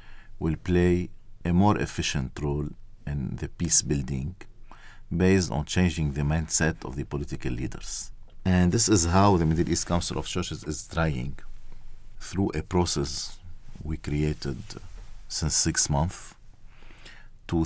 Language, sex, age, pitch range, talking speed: English, male, 50-69, 75-105 Hz, 135 wpm